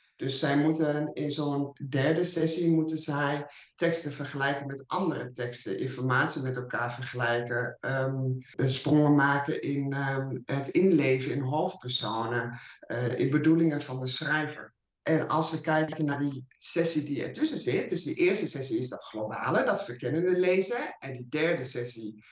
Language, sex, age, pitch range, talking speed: Dutch, male, 60-79, 130-160 Hz, 155 wpm